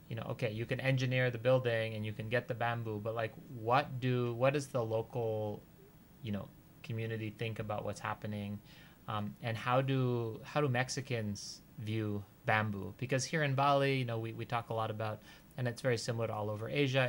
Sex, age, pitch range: male, 30-49, 110-135 Hz